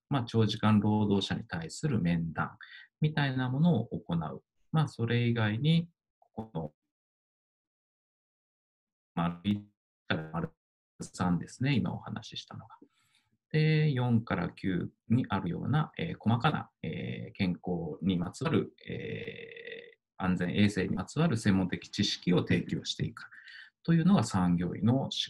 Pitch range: 95-155 Hz